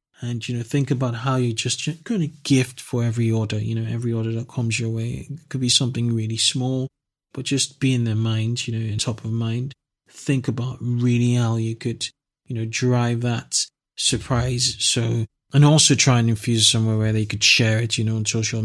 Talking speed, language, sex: 215 wpm, English, male